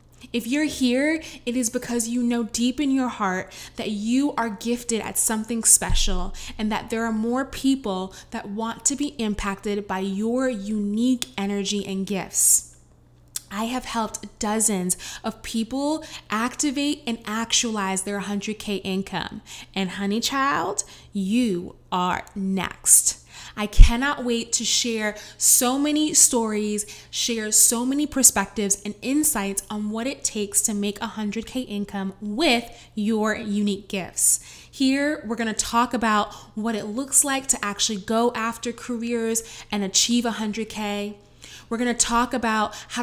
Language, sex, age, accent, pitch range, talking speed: English, female, 20-39, American, 205-255 Hz, 145 wpm